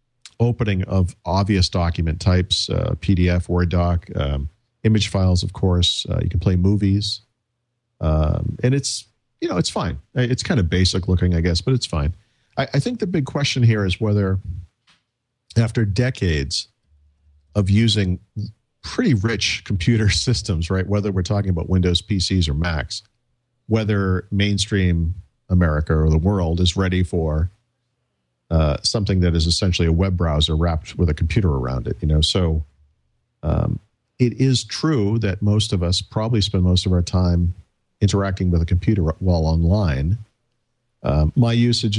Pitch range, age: 90-115 Hz, 50-69